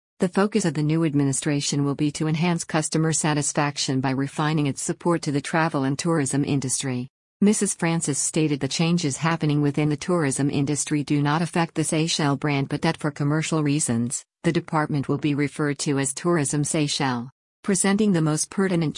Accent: American